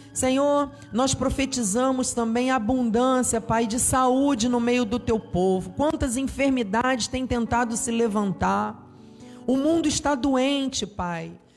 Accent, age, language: Brazilian, 40-59, Portuguese